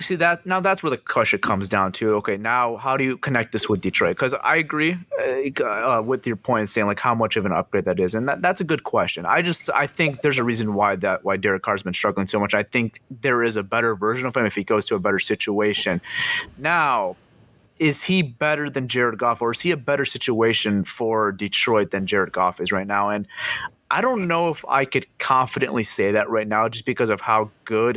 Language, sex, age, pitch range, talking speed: English, male, 30-49, 115-155 Hz, 240 wpm